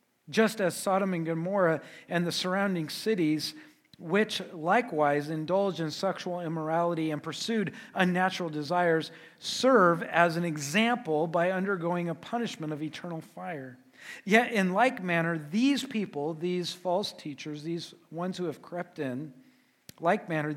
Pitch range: 160-195 Hz